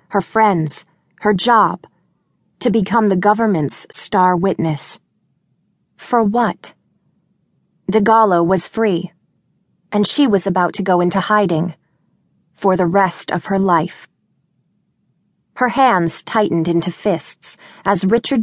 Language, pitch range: English, 170-205 Hz